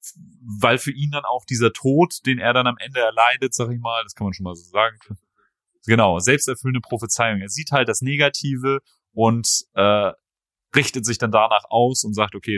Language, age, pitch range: German, 30-49, 105-130 Hz